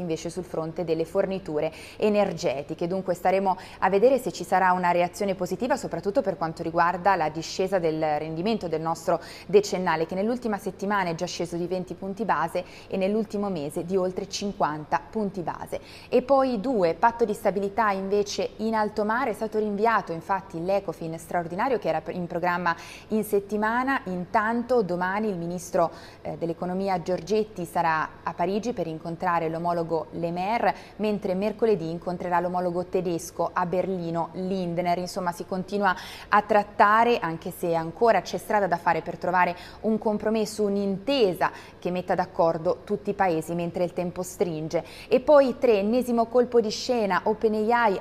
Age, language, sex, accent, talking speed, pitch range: 20-39, Italian, female, native, 155 wpm, 170-210 Hz